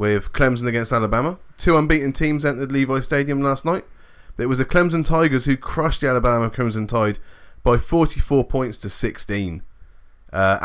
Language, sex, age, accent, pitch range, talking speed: English, male, 20-39, British, 95-120 Hz, 165 wpm